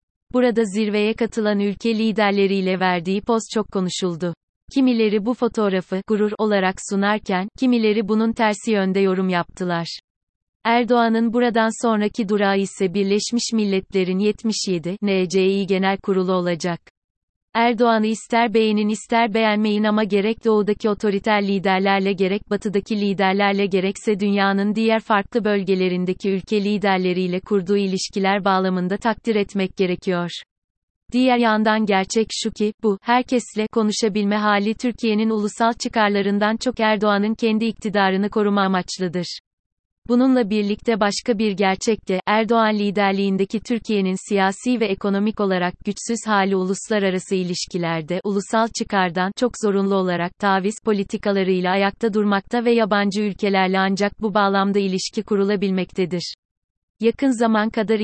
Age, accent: 30-49, native